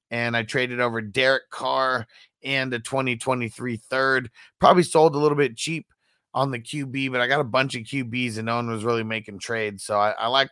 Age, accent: 30-49, American